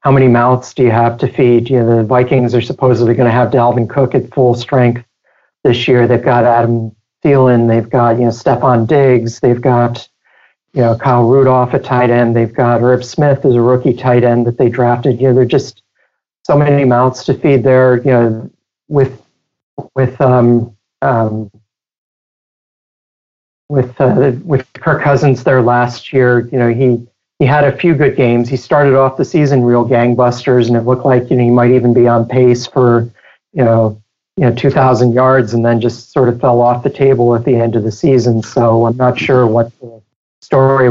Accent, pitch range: American, 120-130 Hz